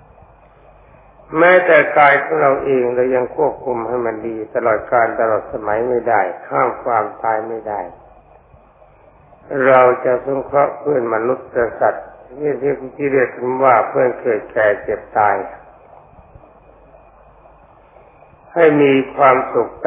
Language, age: Thai, 60-79